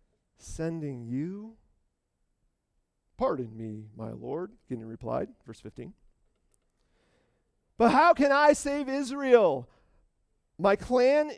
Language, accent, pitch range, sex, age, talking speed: English, American, 160-260 Hz, male, 40-59, 95 wpm